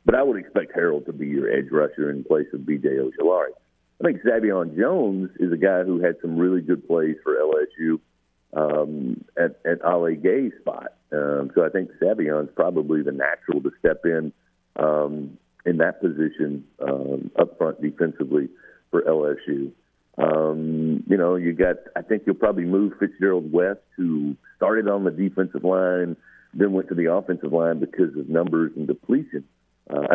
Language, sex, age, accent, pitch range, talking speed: English, male, 50-69, American, 75-90 Hz, 175 wpm